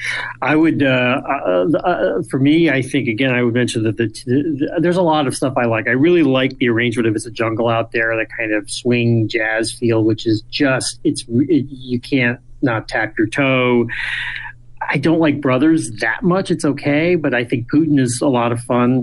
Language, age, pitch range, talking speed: English, 30-49, 115-130 Hz, 205 wpm